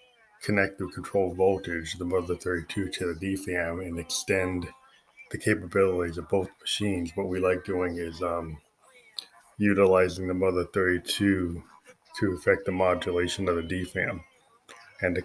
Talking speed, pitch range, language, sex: 140 wpm, 85-100 Hz, English, male